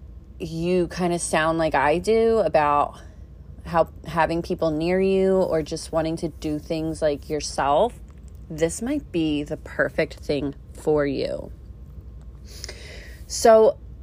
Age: 30-49